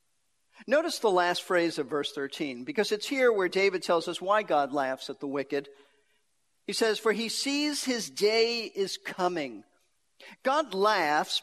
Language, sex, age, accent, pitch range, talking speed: English, male, 50-69, American, 160-225 Hz, 165 wpm